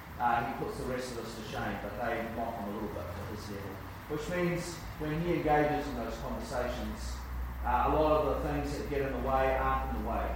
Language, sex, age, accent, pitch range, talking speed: English, male, 30-49, Australian, 110-140 Hz, 245 wpm